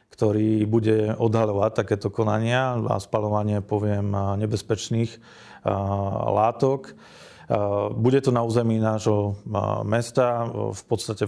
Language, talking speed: Slovak, 95 wpm